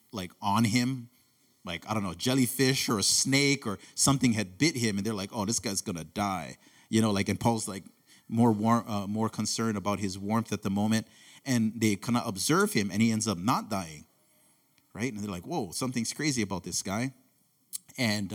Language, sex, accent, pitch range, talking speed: English, male, American, 110-145 Hz, 215 wpm